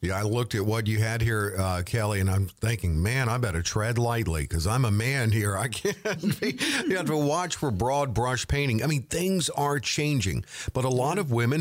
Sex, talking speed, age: male, 220 wpm, 50-69